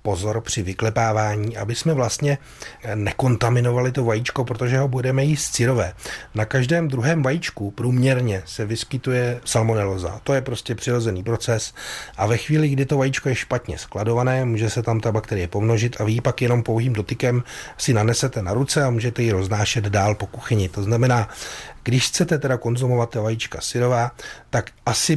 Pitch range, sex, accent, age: 110-135 Hz, male, native, 30-49